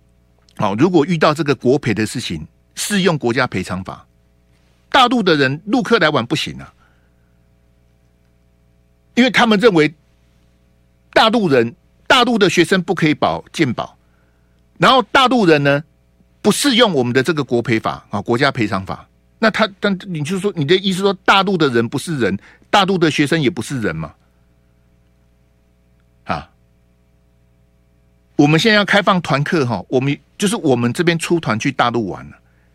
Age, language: 50-69, Chinese